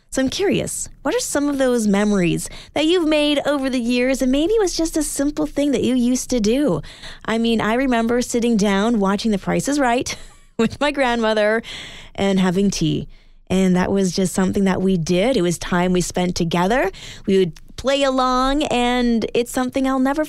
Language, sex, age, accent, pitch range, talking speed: English, female, 20-39, American, 200-280 Hz, 200 wpm